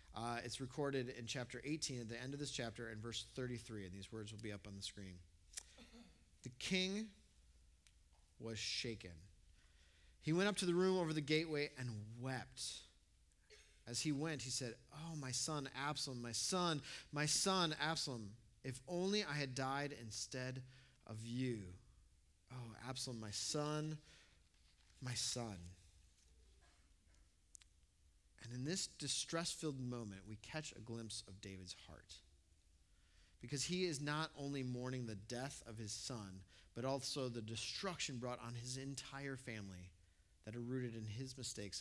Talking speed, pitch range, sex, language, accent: 150 wpm, 90-140 Hz, male, English, American